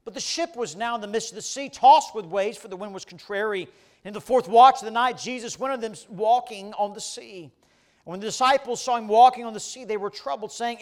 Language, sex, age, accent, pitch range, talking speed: English, male, 40-59, American, 180-255 Hz, 265 wpm